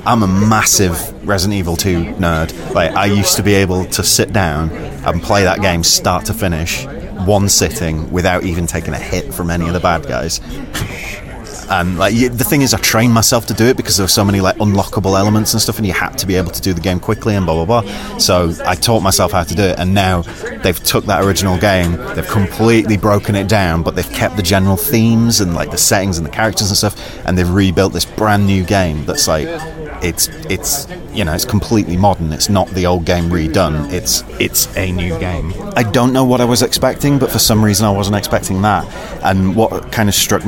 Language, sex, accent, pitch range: English, male, British, 90-110 Hz